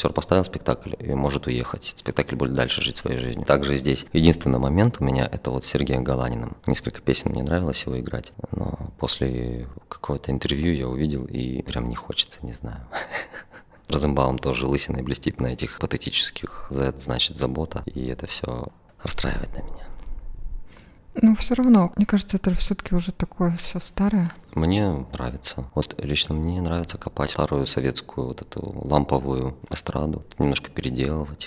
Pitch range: 65-85 Hz